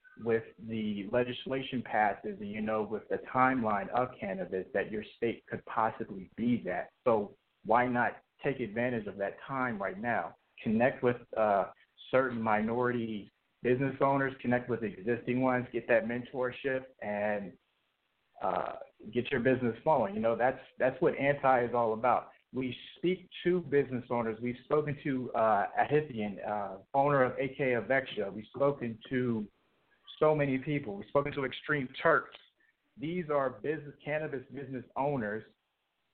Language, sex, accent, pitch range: English, male, American, 115-140 Hz